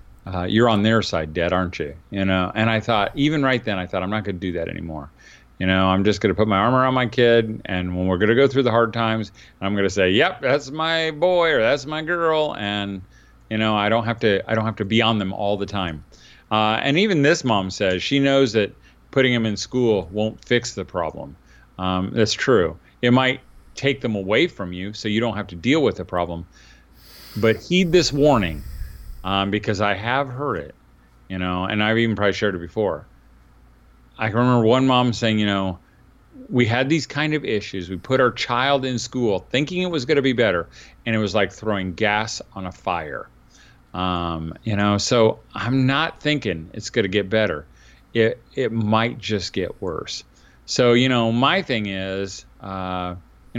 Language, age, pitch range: English, 40-59, 95-125 Hz